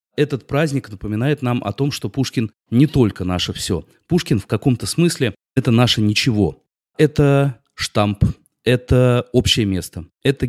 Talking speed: 150 wpm